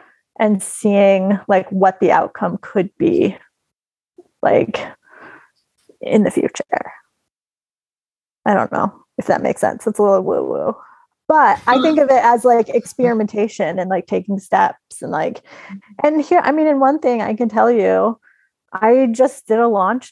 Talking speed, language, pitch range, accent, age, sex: 160 wpm, English, 205-280 Hz, American, 30-49, female